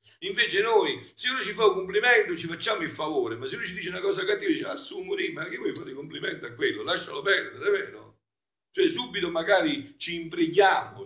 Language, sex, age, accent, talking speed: Italian, male, 50-69, native, 215 wpm